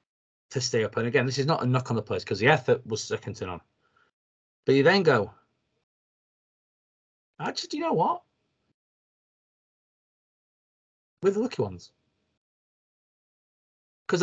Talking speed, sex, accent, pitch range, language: 145 wpm, male, British, 105-135 Hz, English